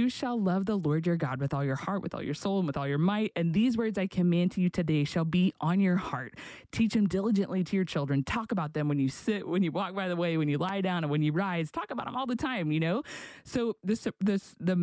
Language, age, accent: English, 20-39, American